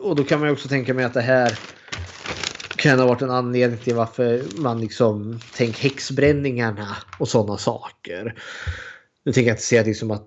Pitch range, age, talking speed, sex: 110-135 Hz, 20-39, 170 wpm, male